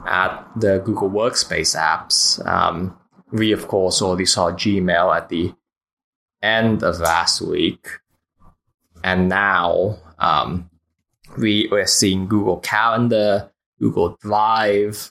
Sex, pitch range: male, 90-110 Hz